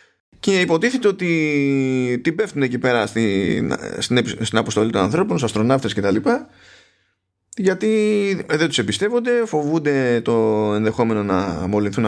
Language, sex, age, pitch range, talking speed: Greek, male, 20-39, 105-160 Hz, 125 wpm